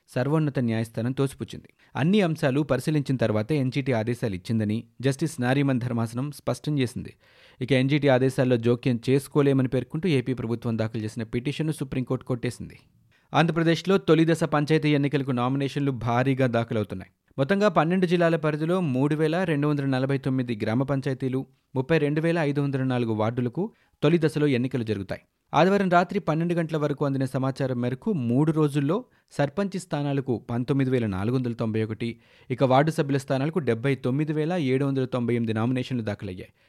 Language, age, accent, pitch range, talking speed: Telugu, 30-49, native, 120-150 Hz, 130 wpm